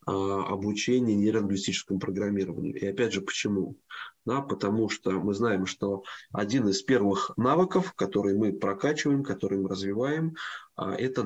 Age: 20-39